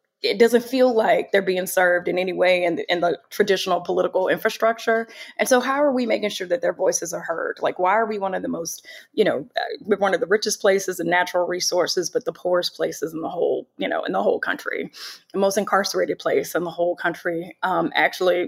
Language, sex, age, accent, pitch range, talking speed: English, female, 20-39, American, 175-215 Hz, 225 wpm